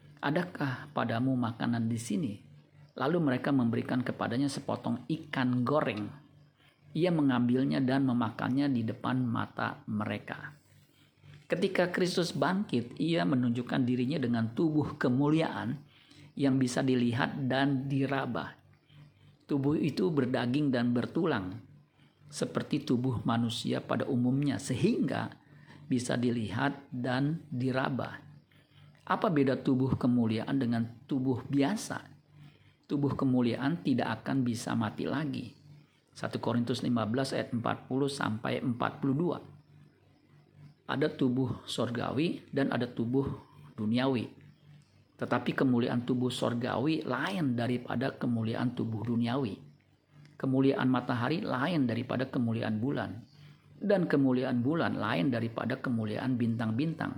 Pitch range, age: 120-145 Hz, 50-69